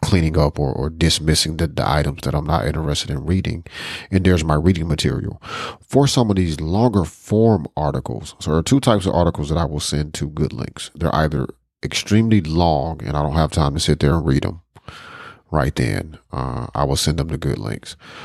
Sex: male